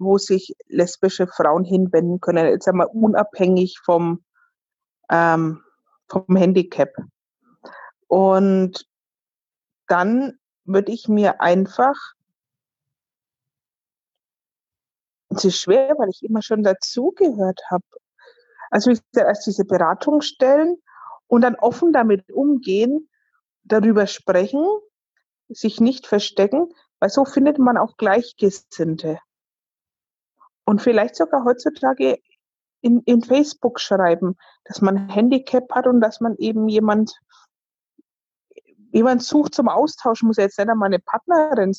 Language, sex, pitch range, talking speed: German, female, 185-260 Hz, 110 wpm